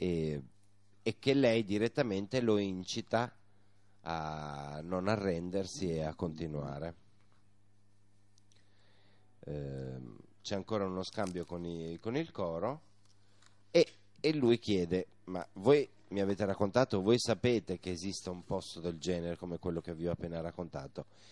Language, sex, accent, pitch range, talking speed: Italian, male, native, 85-100 Hz, 120 wpm